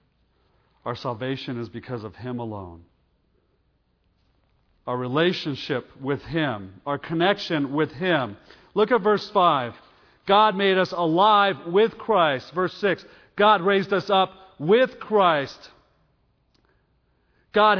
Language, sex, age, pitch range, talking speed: English, male, 40-59, 105-170 Hz, 115 wpm